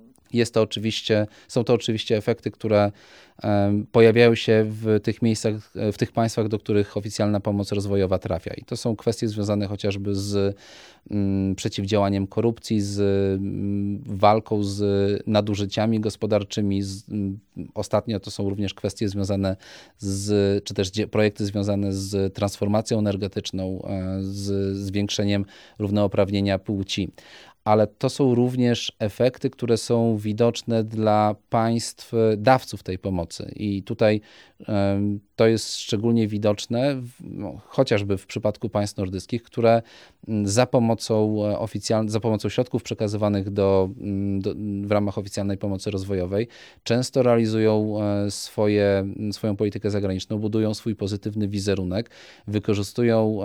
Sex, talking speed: male, 115 wpm